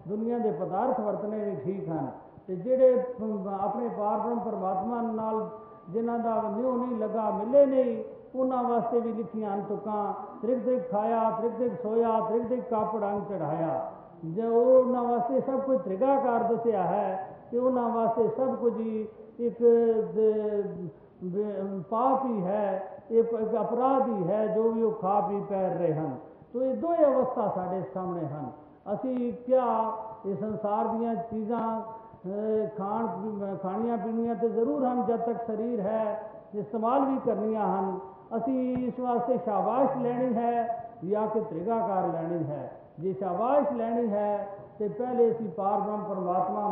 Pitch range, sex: 200-240 Hz, male